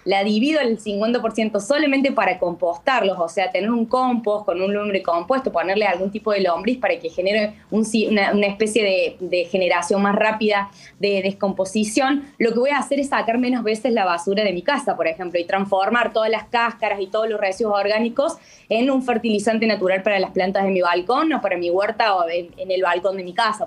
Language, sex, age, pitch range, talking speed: Spanish, female, 20-39, 195-255 Hz, 215 wpm